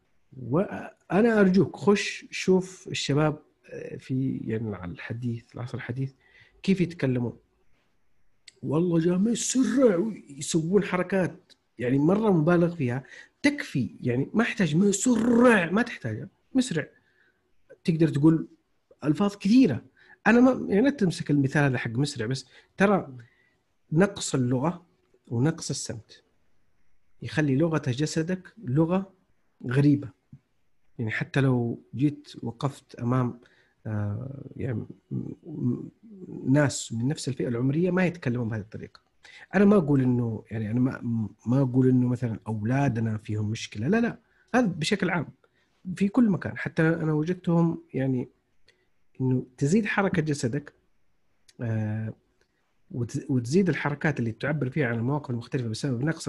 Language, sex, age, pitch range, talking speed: Arabic, male, 50-69, 125-180 Hz, 125 wpm